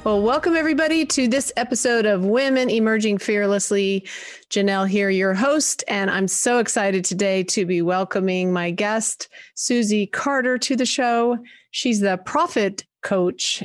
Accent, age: American, 40-59